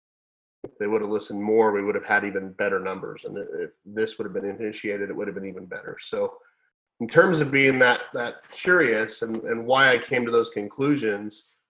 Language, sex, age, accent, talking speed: English, male, 30-49, American, 215 wpm